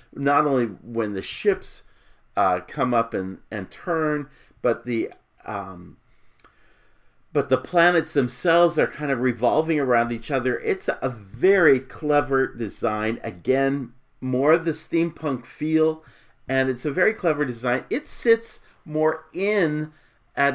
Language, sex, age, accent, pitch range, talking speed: English, male, 40-59, American, 110-150 Hz, 135 wpm